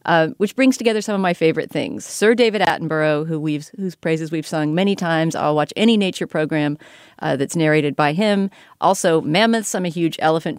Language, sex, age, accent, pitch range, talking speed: English, female, 40-59, American, 155-185 Hz, 205 wpm